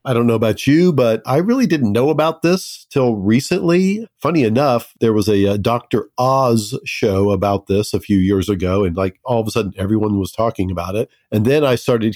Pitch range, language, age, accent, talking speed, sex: 105-130 Hz, English, 50-69, American, 215 wpm, male